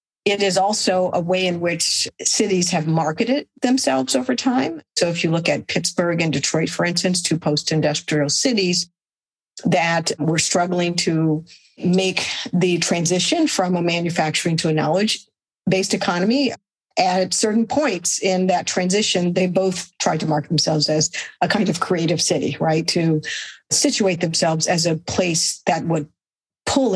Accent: American